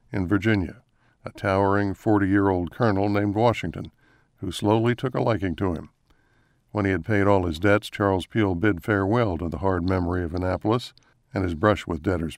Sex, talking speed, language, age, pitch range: male, 180 wpm, English, 60-79, 95-115 Hz